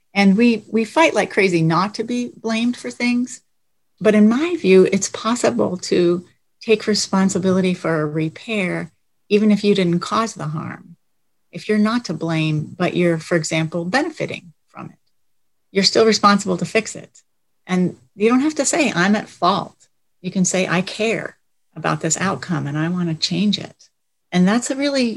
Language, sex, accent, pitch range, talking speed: English, female, American, 160-205 Hz, 180 wpm